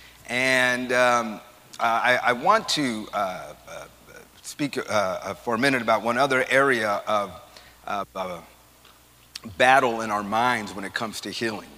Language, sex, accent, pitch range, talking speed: English, male, American, 110-125 Hz, 150 wpm